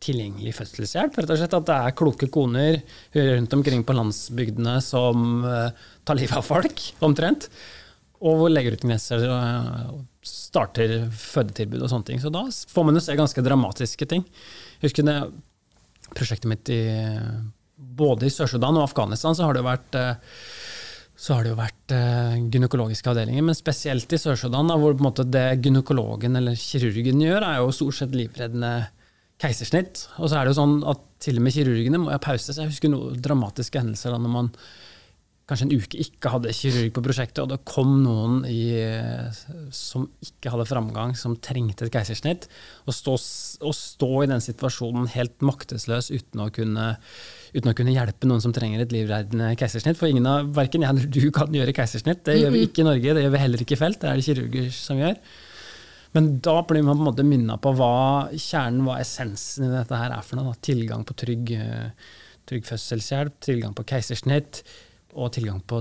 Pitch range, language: 115-145 Hz, English